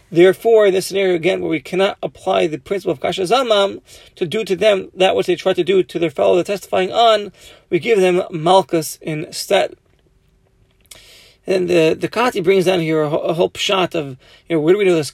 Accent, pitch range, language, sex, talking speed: American, 170-205 Hz, English, male, 215 wpm